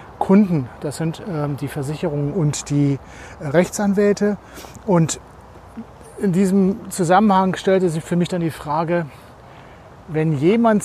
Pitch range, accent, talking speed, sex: 140-180 Hz, German, 125 wpm, male